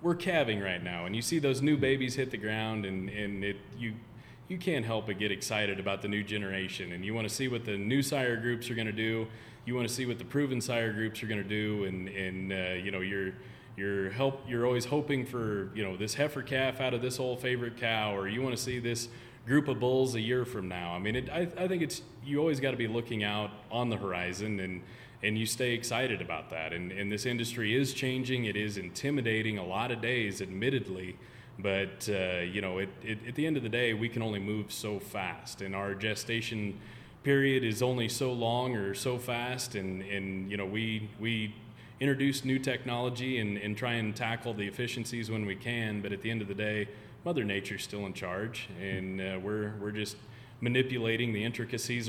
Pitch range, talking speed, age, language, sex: 100-125 Hz, 225 wpm, 30-49, English, male